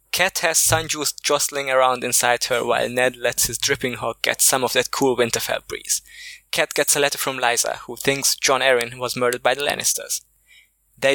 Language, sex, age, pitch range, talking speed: English, male, 20-39, 125-155 Hz, 195 wpm